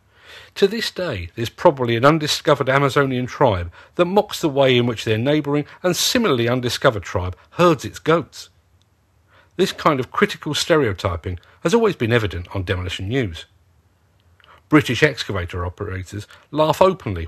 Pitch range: 95-150 Hz